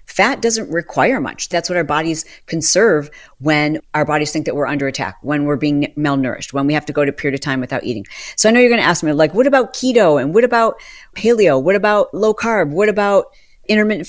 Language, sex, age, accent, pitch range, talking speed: English, female, 40-59, American, 140-205 Hz, 240 wpm